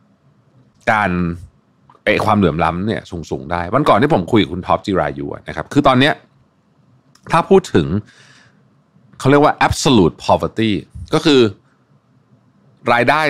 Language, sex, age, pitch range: Thai, male, 30-49, 85-120 Hz